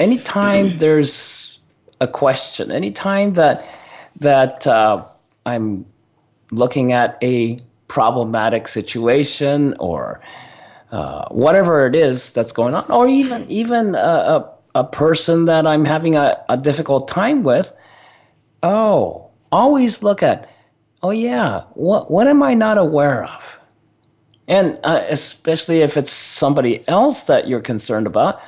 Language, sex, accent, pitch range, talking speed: English, male, American, 125-190 Hz, 130 wpm